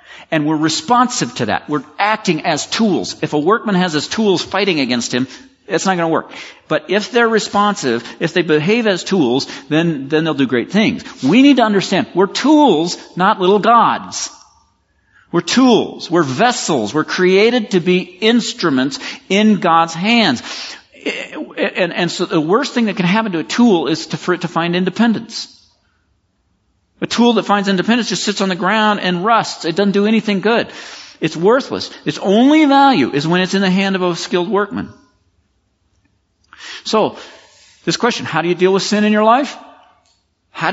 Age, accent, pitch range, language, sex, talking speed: 50-69, American, 165-225 Hz, English, male, 180 wpm